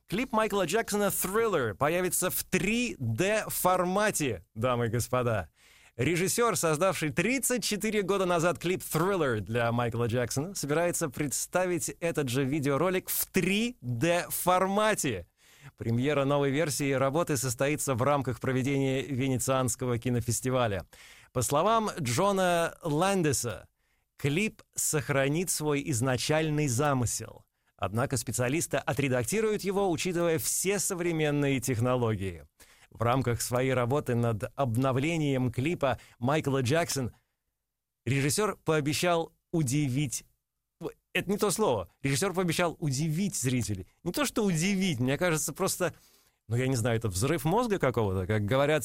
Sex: male